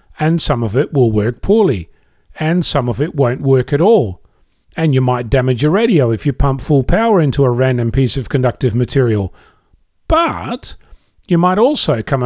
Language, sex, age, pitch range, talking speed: English, male, 40-59, 125-155 Hz, 185 wpm